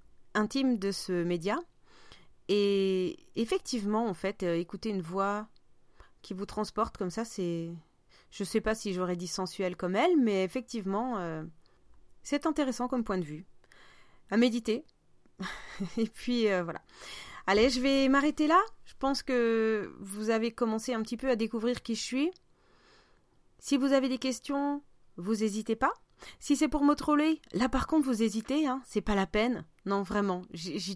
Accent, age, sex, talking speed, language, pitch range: French, 30-49, female, 170 wpm, French, 195-260 Hz